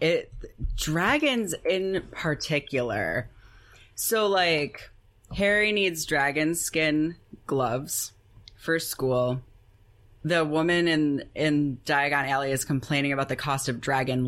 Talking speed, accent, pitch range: 110 wpm, American, 125-195 Hz